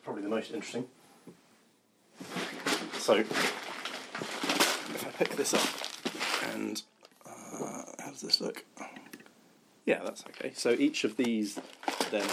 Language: English